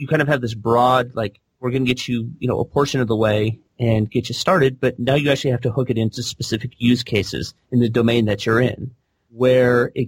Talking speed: 250 wpm